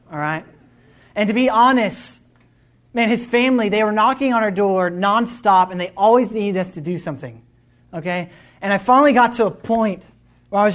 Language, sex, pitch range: English, male, 135-195 Hz